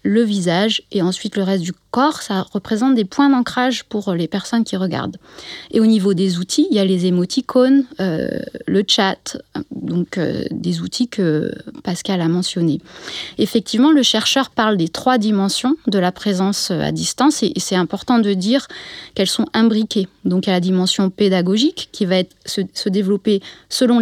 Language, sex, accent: French, female, French